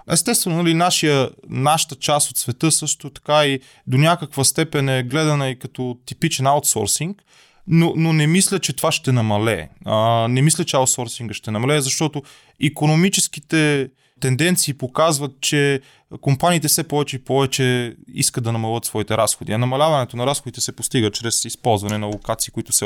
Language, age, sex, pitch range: Bulgarian, 20-39, male, 115-145 Hz